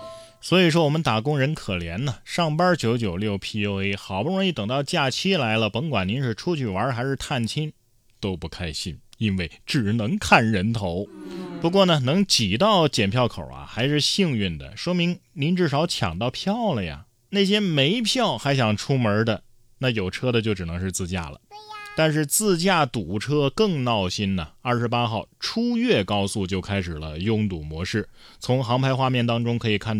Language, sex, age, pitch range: Chinese, male, 20-39, 105-155 Hz